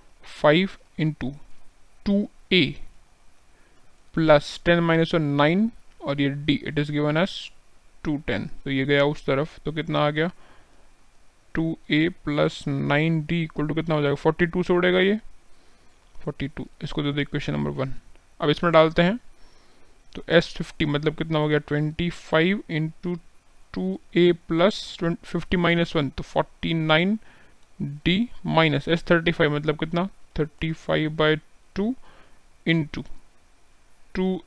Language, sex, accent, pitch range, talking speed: Hindi, male, native, 145-170 Hz, 120 wpm